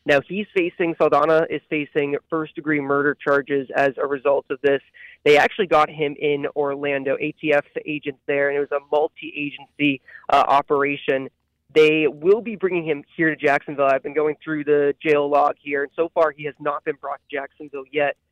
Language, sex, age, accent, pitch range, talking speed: English, male, 20-39, American, 140-160 Hz, 185 wpm